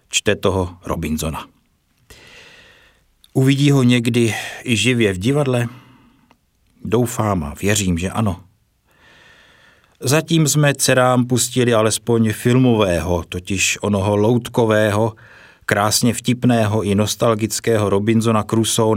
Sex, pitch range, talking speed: male, 100-120 Hz, 95 wpm